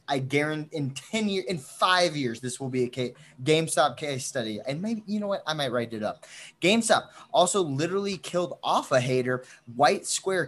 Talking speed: 195 wpm